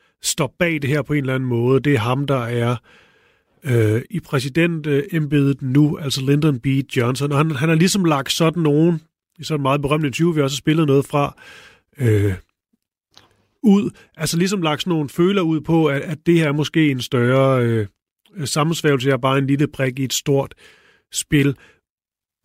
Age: 30-49